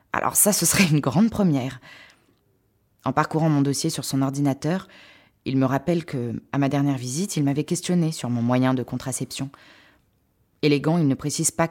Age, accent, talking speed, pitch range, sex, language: 20-39, French, 180 wpm, 130-165 Hz, female, French